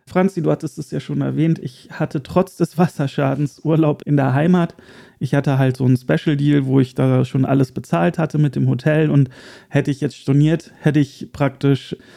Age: 40-59